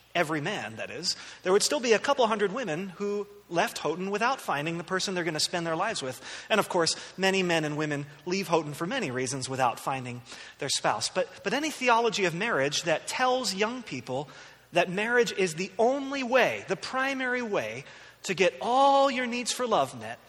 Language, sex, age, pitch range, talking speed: English, male, 30-49, 165-220 Hz, 205 wpm